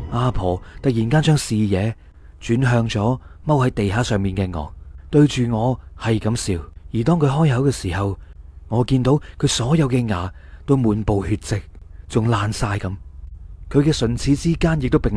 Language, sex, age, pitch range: Chinese, male, 30-49, 95-130 Hz